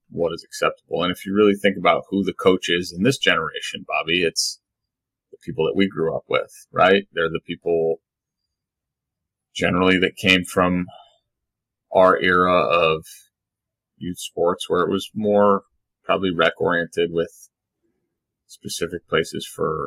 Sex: male